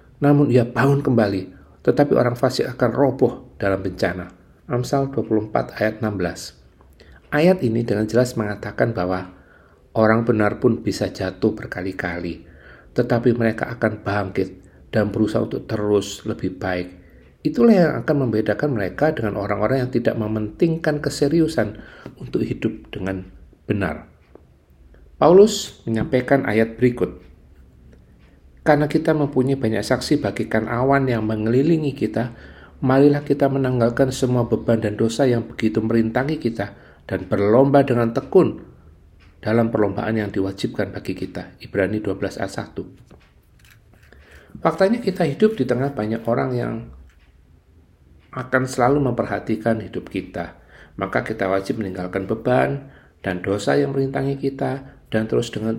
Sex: male